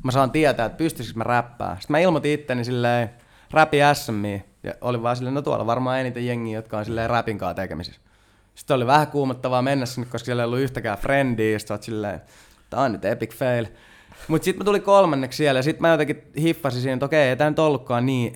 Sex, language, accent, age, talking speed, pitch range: male, Finnish, native, 20-39, 220 wpm, 110-135 Hz